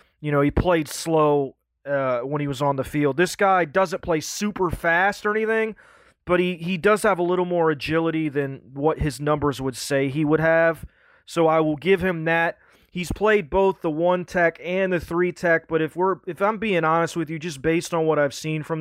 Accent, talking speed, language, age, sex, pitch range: American, 225 wpm, English, 30-49, male, 155-190 Hz